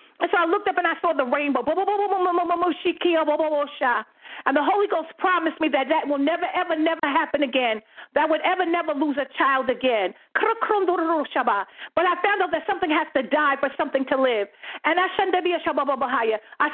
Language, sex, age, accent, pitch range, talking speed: English, female, 50-69, American, 305-380 Hz, 170 wpm